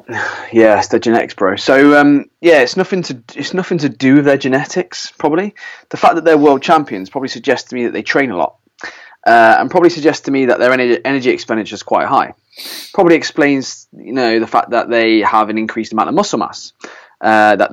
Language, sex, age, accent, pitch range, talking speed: English, male, 20-39, British, 110-160 Hz, 220 wpm